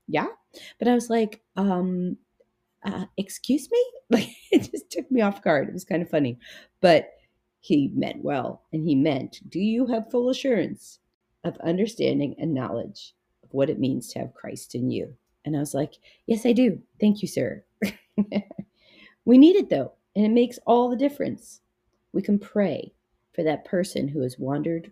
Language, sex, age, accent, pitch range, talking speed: English, female, 40-59, American, 140-205 Hz, 180 wpm